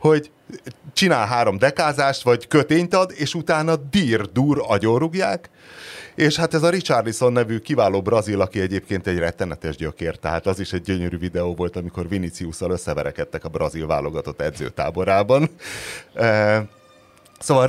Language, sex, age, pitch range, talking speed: Hungarian, male, 30-49, 90-150 Hz, 135 wpm